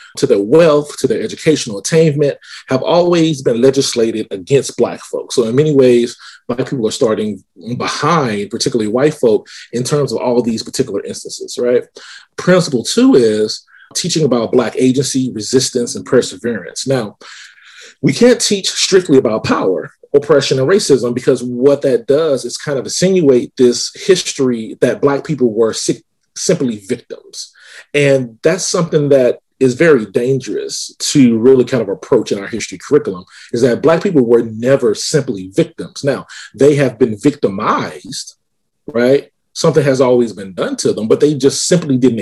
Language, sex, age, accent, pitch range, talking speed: English, male, 30-49, American, 120-165 Hz, 160 wpm